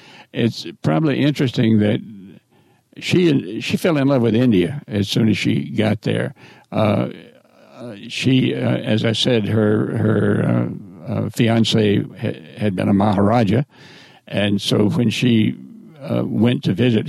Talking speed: 135 wpm